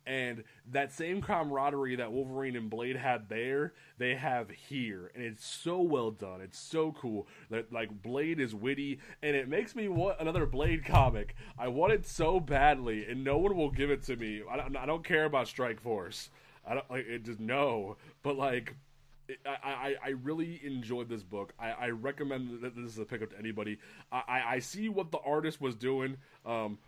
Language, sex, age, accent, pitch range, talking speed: English, male, 20-39, American, 115-145 Hz, 190 wpm